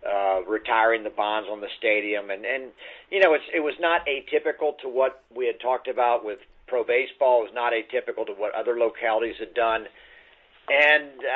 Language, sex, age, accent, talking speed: English, male, 50-69, American, 190 wpm